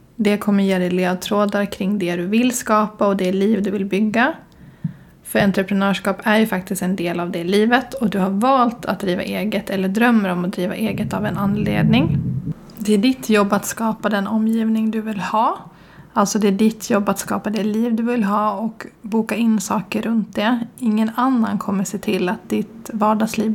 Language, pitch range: Swedish, 200-225 Hz